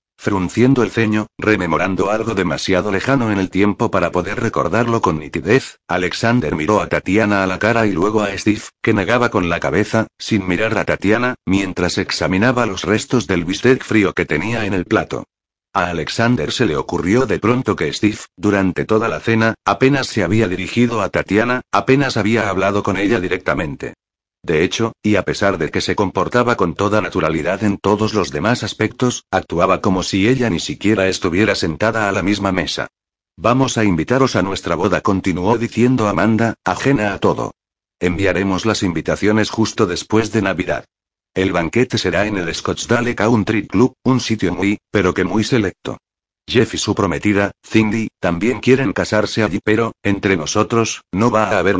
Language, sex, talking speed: Spanish, male, 175 wpm